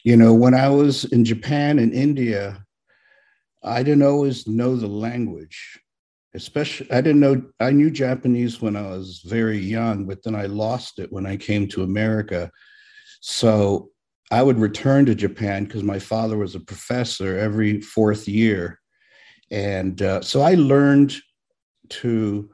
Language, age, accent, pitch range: English, 50-69, American, 100-120 Hz